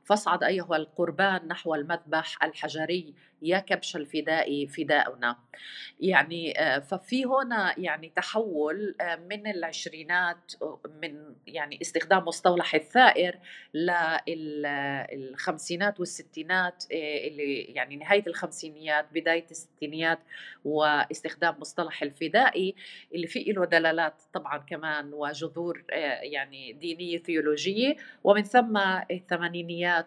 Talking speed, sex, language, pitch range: 90 wpm, female, Arabic, 155-185 Hz